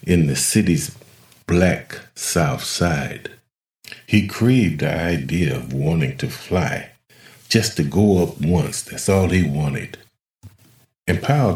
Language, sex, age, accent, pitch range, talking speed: English, male, 40-59, American, 80-110 Hz, 130 wpm